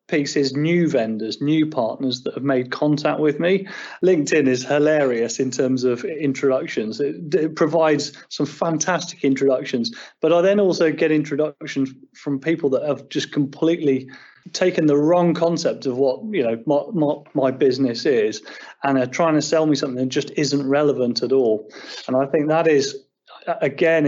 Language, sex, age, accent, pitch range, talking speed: English, male, 30-49, British, 135-160 Hz, 170 wpm